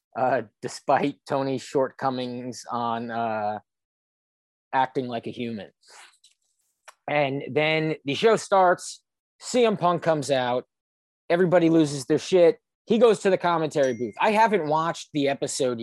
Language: English